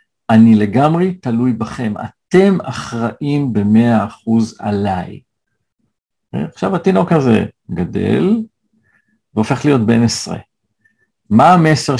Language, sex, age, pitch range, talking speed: Hebrew, male, 50-69, 110-145 Hz, 95 wpm